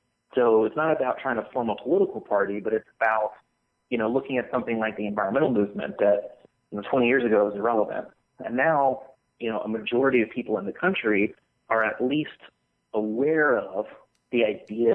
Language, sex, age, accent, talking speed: English, male, 30-49, American, 195 wpm